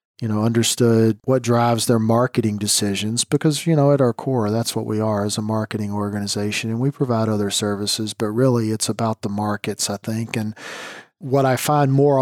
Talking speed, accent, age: 195 wpm, American, 40-59